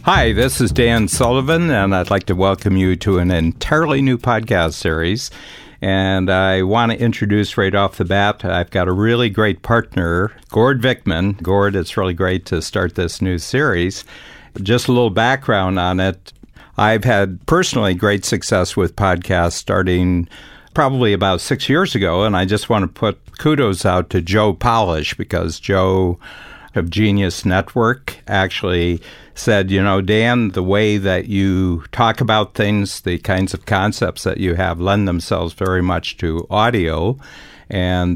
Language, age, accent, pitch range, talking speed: English, 60-79, American, 90-110 Hz, 165 wpm